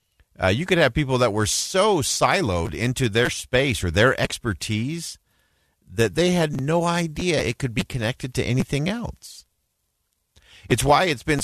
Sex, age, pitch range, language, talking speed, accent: male, 50-69, 90-130 Hz, English, 165 wpm, American